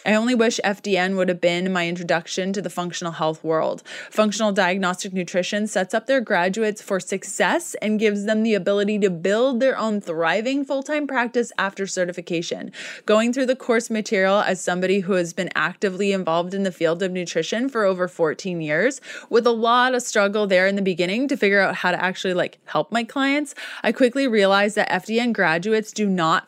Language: English